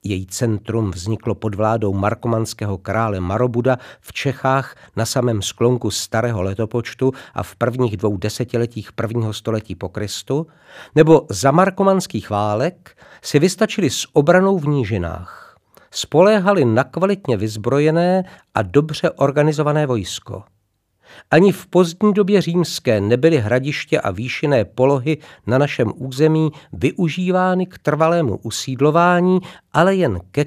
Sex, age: male, 50-69